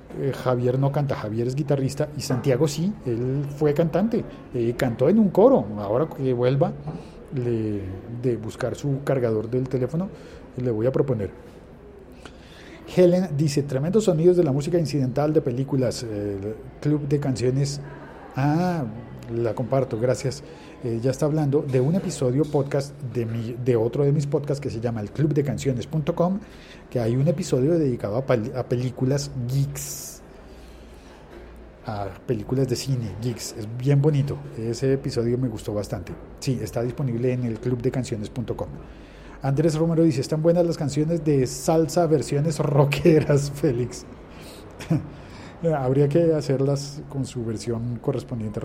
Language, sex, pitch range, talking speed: Spanish, male, 120-150 Hz, 145 wpm